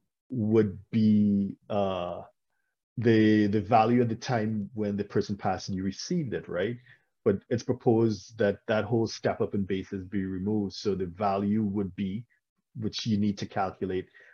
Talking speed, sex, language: 165 wpm, male, English